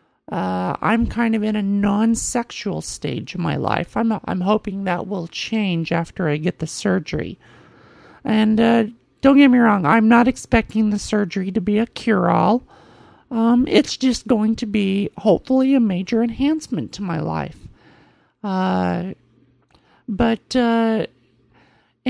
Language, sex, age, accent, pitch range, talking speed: English, male, 40-59, American, 190-235 Hz, 145 wpm